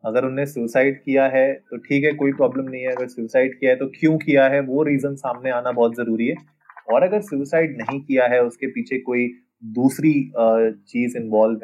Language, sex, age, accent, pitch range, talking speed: Hindi, male, 20-39, native, 115-135 Hz, 200 wpm